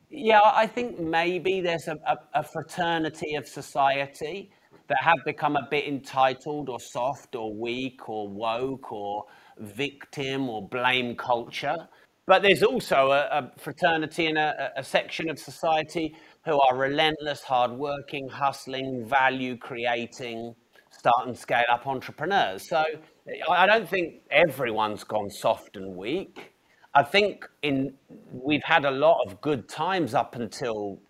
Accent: British